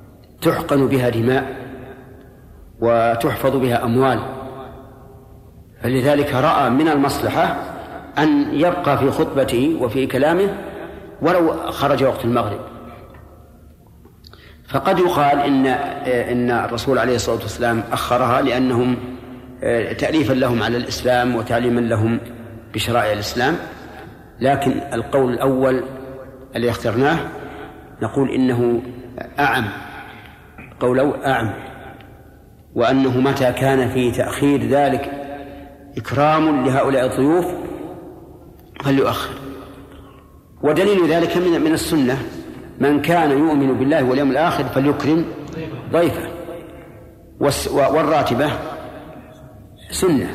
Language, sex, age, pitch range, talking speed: Arabic, male, 50-69, 120-140 Hz, 85 wpm